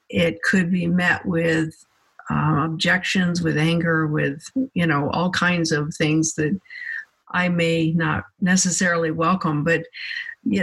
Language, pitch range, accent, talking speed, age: English, 160-200 Hz, American, 135 wpm, 50-69